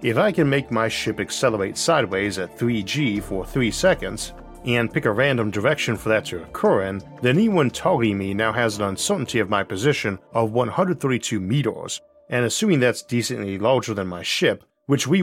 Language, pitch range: English, 100-135 Hz